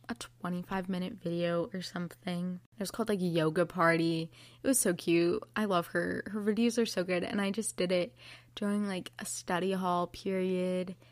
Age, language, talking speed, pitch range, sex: 20-39, English, 195 wpm, 170-210 Hz, female